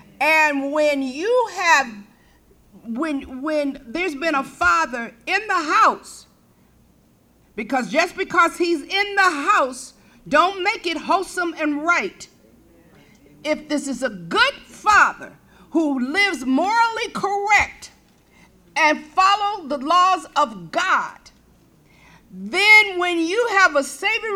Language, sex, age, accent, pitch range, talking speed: English, female, 50-69, American, 255-350 Hz, 120 wpm